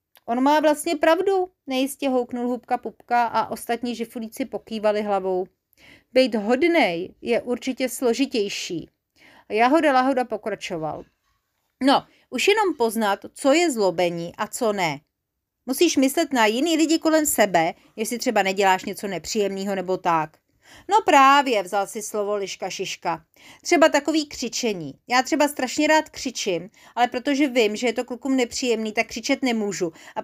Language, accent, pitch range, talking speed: Czech, native, 220-295 Hz, 145 wpm